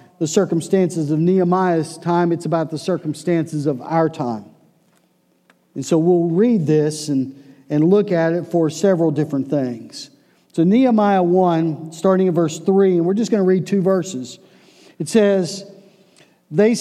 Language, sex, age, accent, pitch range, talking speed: English, male, 50-69, American, 155-190 Hz, 155 wpm